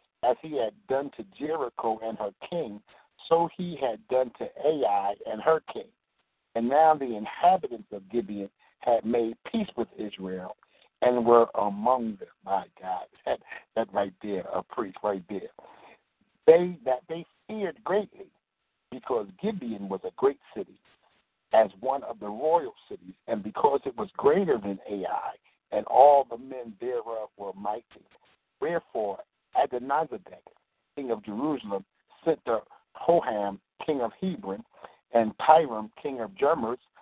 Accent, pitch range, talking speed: American, 110-165 Hz, 145 wpm